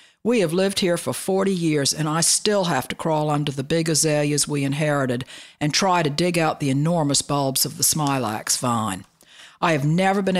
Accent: American